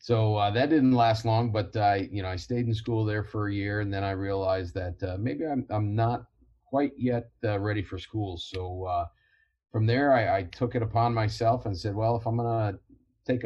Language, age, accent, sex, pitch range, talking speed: English, 40-59, American, male, 95-115 Hz, 235 wpm